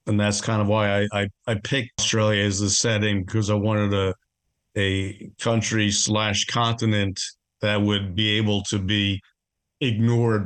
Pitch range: 100-115 Hz